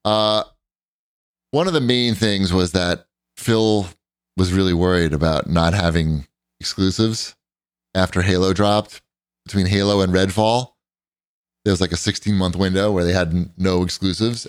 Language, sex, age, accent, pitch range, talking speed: English, male, 30-49, American, 85-135 Hz, 150 wpm